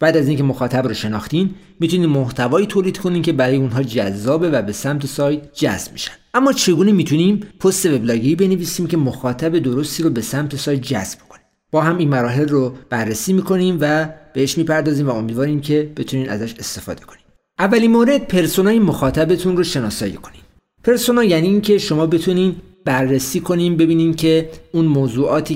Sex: male